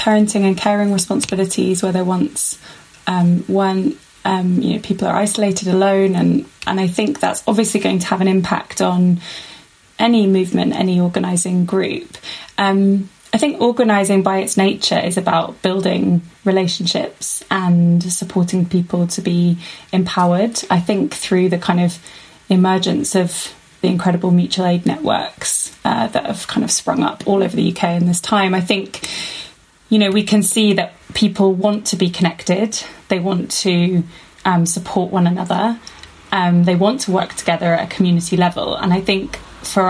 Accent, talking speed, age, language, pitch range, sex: British, 165 wpm, 20-39, English, 175-195 Hz, female